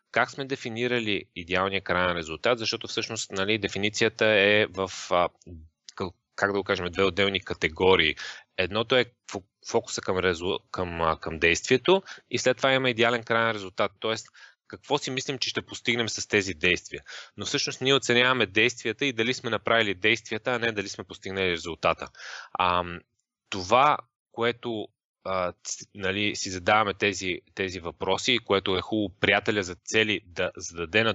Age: 20-39